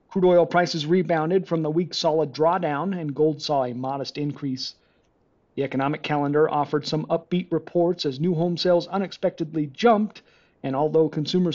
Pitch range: 150-180 Hz